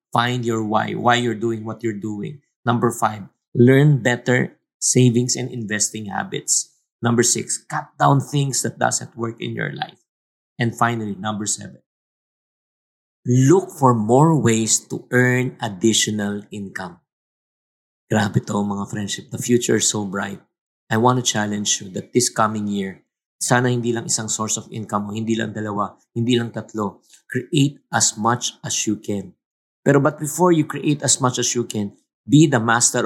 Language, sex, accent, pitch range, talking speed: English, male, Filipino, 110-140 Hz, 165 wpm